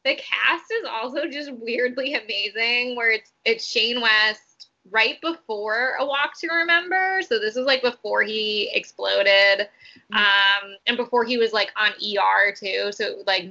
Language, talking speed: English, 160 wpm